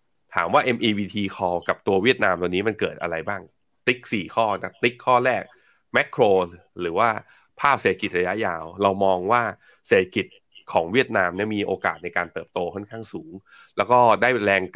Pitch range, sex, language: 95-115 Hz, male, Thai